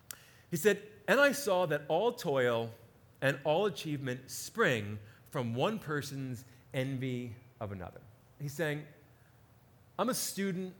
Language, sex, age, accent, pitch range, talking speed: English, male, 30-49, American, 115-175 Hz, 130 wpm